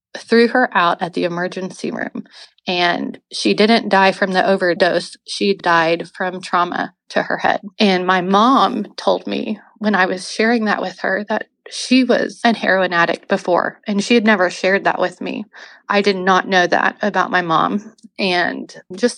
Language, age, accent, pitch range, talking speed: English, 20-39, American, 180-210 Hz, 180 wpm